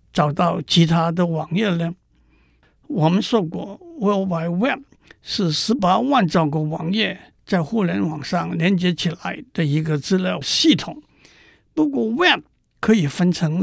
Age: 60-79